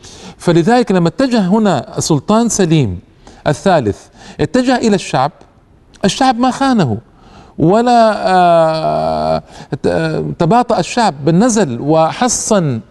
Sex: male